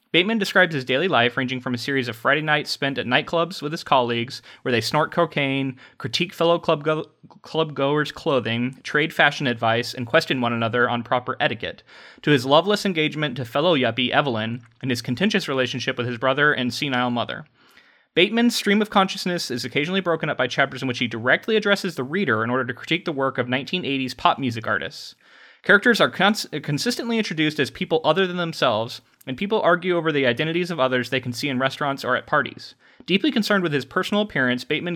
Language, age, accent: English, 30-49, American